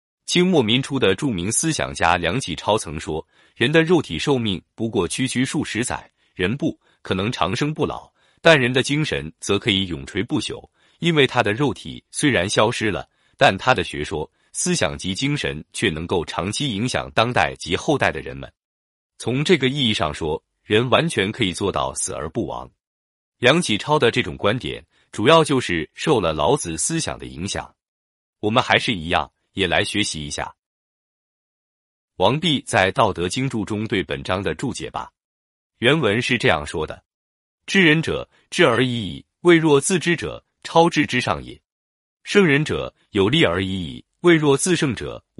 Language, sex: Chinese, male